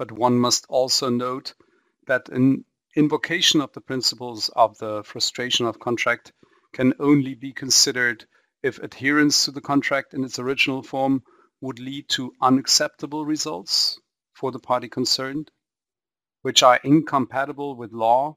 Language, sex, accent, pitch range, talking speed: German, male, German, 120-140 Hz, 140 wpm